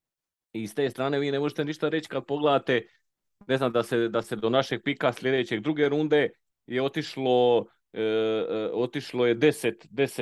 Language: Croatian